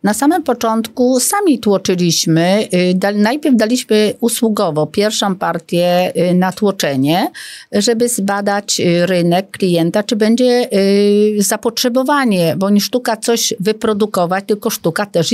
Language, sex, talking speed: Polish, female, 105 wpm